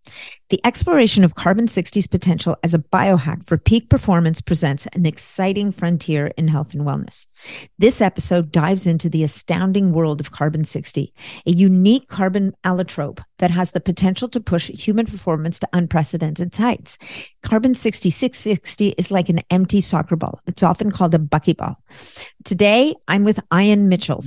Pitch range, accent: 165-205 Hz, American